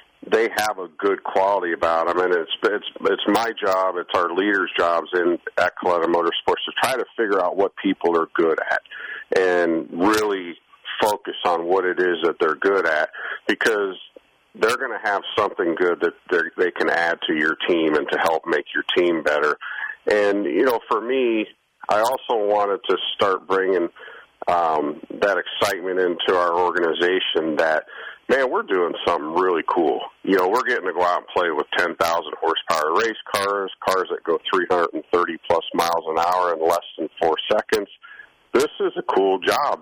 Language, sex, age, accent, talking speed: English, male, 50-69, American, 180 wpm